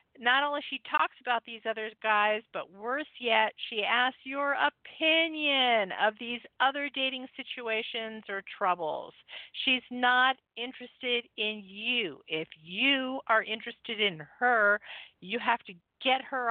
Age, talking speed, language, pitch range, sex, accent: 50-69, 140 wpm, English, 205-270 Hz, female, American